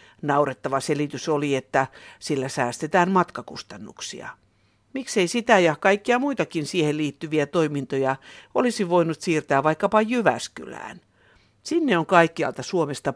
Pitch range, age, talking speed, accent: 135-185 Hz, 60-79, 110 wpm, native